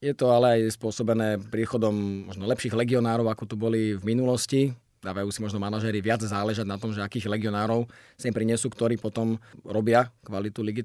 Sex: male